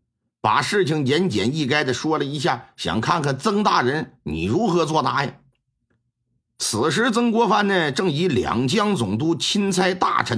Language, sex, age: Chinese, male, 50-69